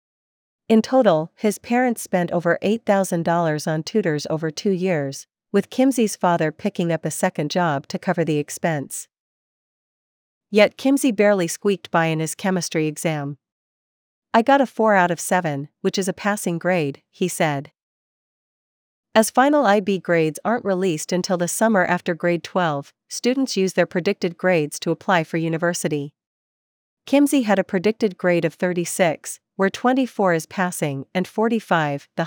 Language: English